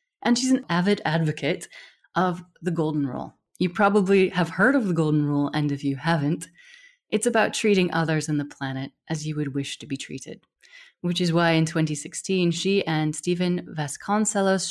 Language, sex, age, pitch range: English, female, 30-49, 145-185 Hz